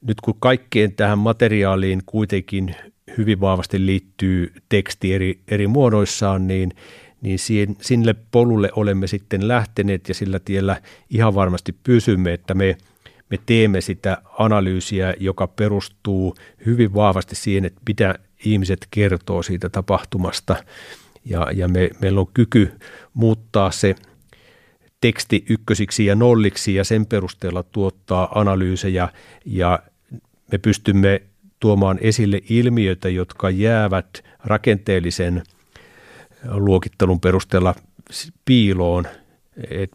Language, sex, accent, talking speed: Finnish, male, native, 110 wpm